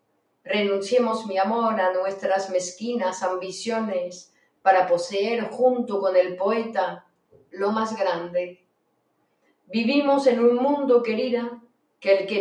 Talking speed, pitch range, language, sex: 115 wpm, 195-260 Hz, Spanish, female